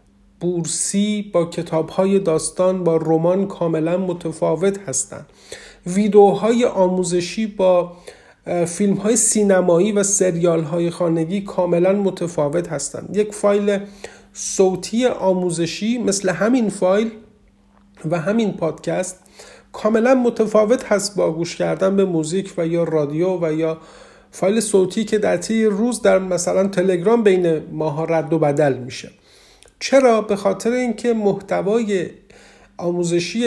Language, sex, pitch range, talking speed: Persian, male, 170-210 Hz, 115 wpm